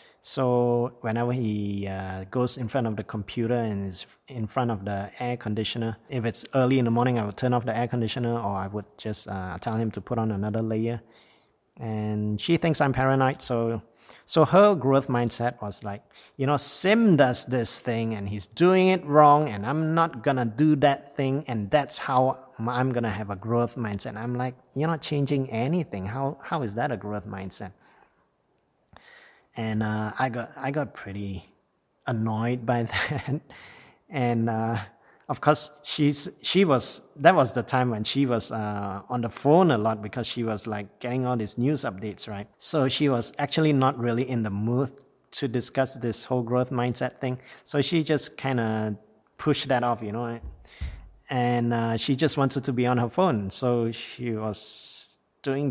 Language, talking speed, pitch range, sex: English, 190 wpm, 110-135 Hz, male